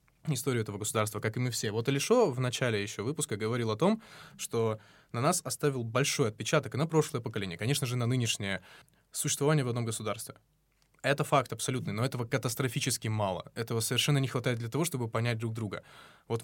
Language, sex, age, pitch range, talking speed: Russian, male, 20-39, 110-145 Hz, 190 wpm